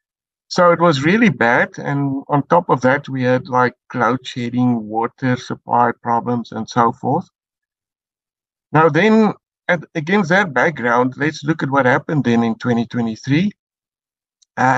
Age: 60-79